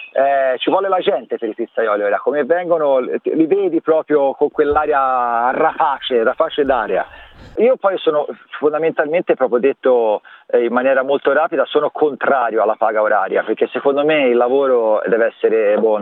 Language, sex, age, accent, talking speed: Italian, male, 40-59, native, 165 wpm